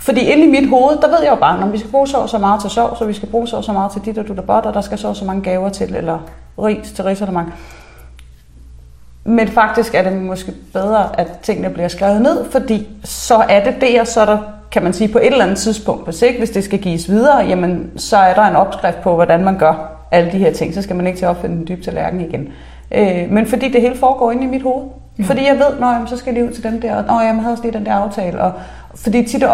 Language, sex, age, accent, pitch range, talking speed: Danish, female, 30-49, native, 175-235 Hz, 275 wpm